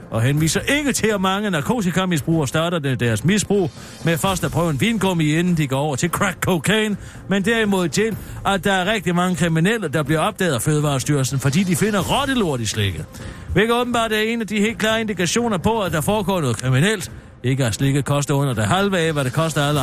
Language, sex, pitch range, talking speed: Danish, male, 140-210 Hz, 210 wpm